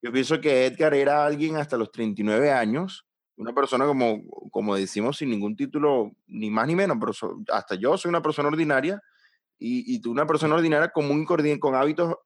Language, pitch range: Spanish, 120-160 Hz